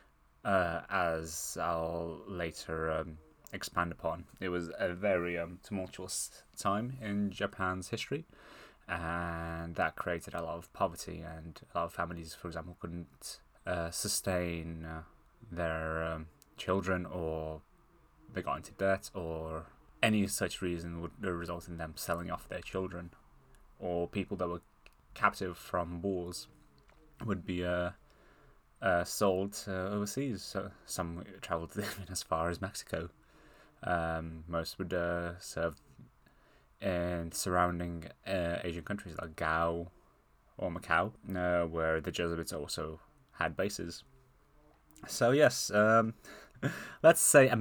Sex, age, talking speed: male, 20-39, 130 wpm